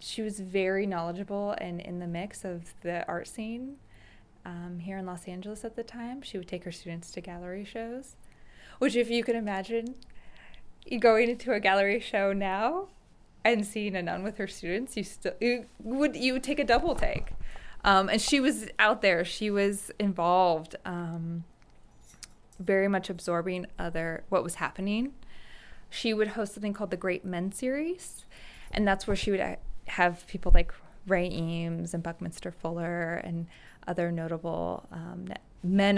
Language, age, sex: English, 20-39, female